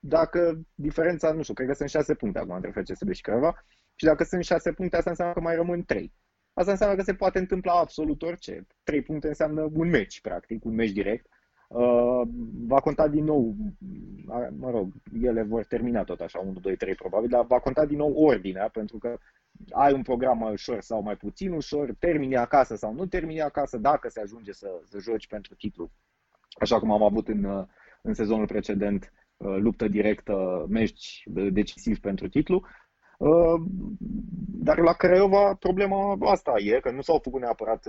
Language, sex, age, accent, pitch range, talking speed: Romanian, male, 20-39, native, 105-170 Hz, 180 wpm